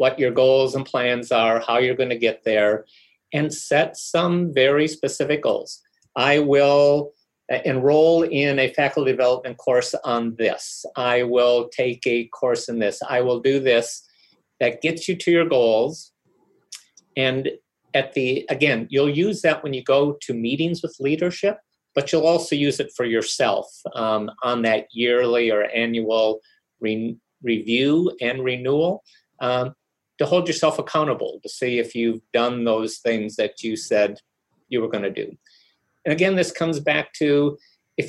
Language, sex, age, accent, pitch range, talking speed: English, male, 50-69, American, 120-165 Hz, 160 wpm